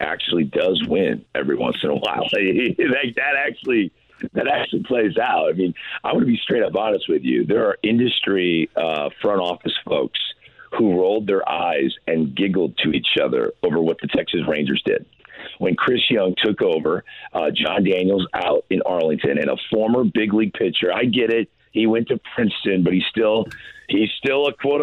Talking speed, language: 185 wpm, English